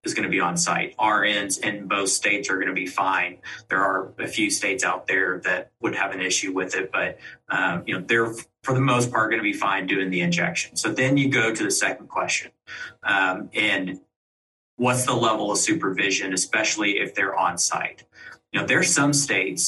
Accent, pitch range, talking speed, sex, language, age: American, 95-135 Hz, 215 wpm, male, English, 30-49